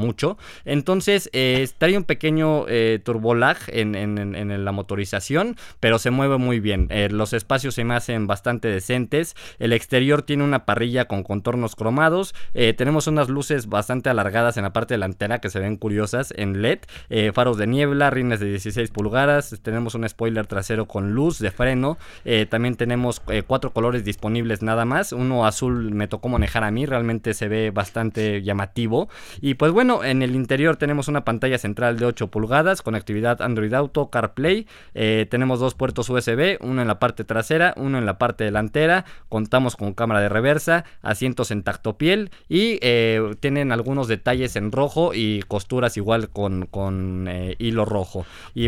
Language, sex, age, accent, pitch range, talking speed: Spanish, male, 20-39, Mexican, 110-140 Hz, 180 wpm